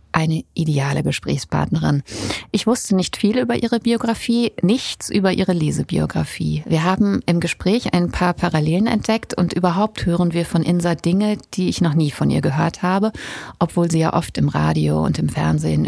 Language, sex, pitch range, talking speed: German, female, 165-210 Hz, 175 wpm